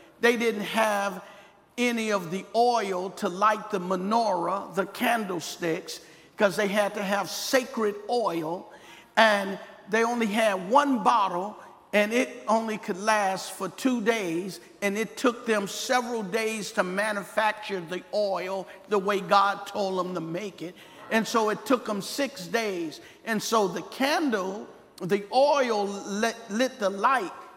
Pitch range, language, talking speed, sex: 200-240 Hz, English, 150 wpm, male